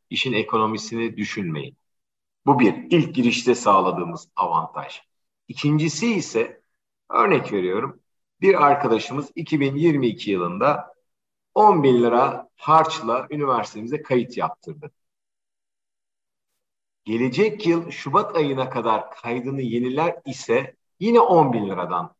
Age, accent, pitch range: 50-69, native, 105-145 Hz